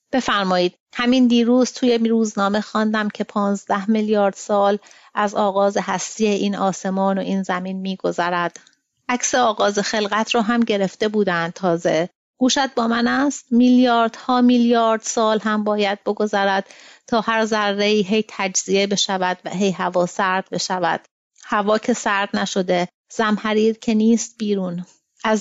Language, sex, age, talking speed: English, female, 30-49, 135 wpm